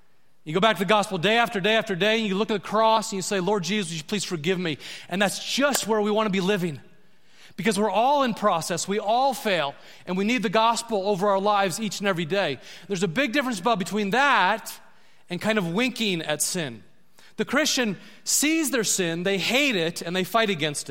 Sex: male